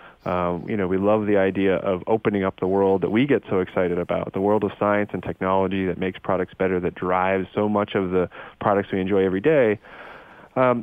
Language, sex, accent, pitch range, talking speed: English, male, American, 90-115 Hz, 220 wpm